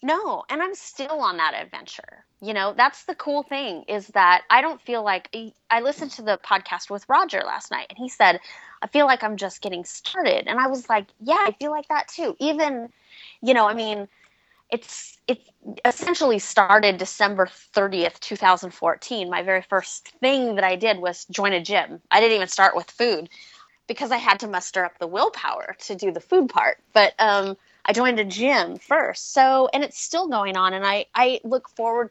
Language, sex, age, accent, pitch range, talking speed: English, female, 20-39, American, 195-260 Hz, 200 wpm